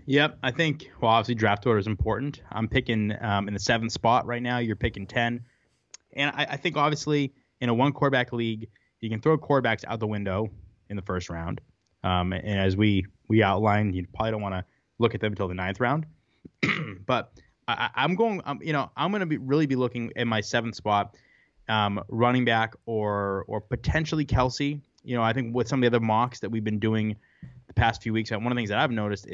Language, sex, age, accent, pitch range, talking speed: English, male, 20-39, American, 100-125 Hz, 225 wpm